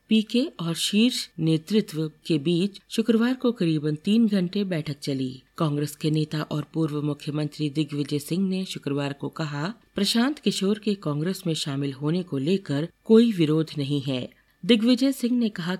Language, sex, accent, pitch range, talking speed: Hindi, female, native, 150-205 Hz, 160 wpm